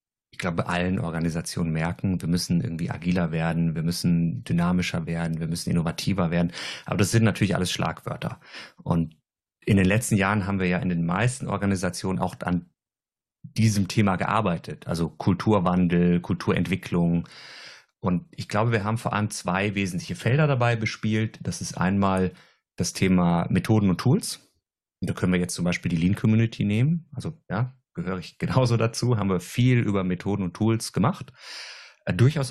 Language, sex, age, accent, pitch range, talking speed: German, male, 30-49, German, 90-110 Hz, 165 wpm